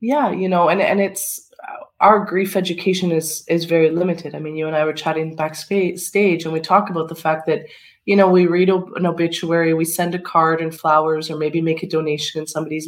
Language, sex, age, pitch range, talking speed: English, female, 20-39, 160-185 Hz, 220 wpm